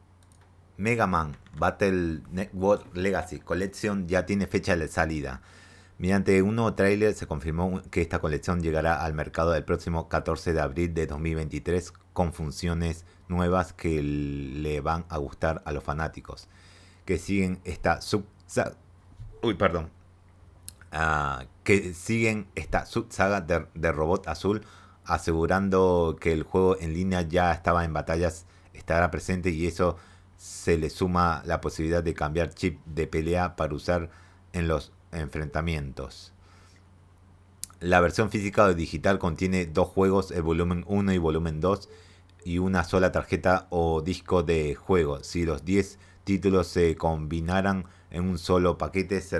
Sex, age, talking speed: male, 30-49, 145 wpm